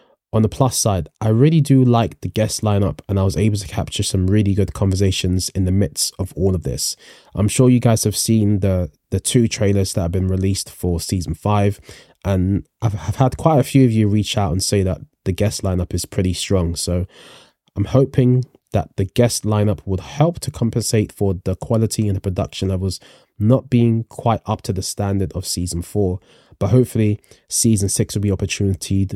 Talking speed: 205 wpm